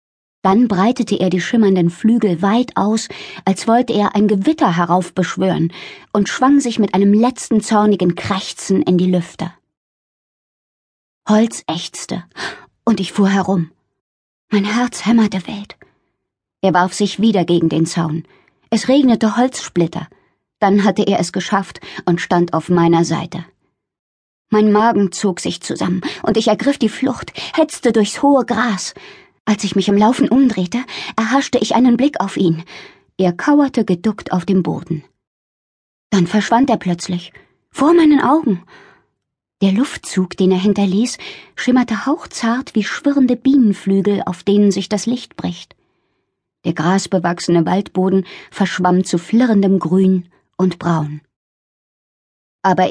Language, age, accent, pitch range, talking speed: German, 20-39, German, 180-235 Hz, 135 wpm